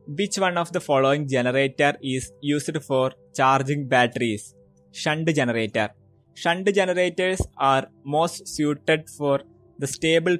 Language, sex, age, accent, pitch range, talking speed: Malayalam, male, 20-39, native, 130-160 Hz, 120 wpm